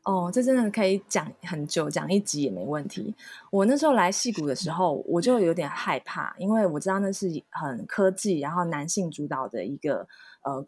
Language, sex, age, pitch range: Chinese, female, 20-39, 150-195 Hz